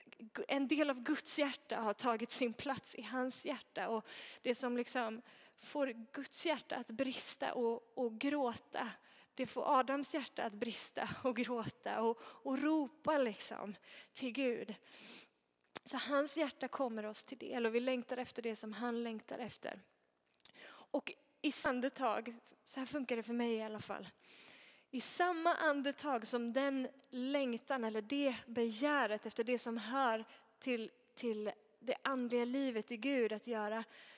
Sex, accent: female, native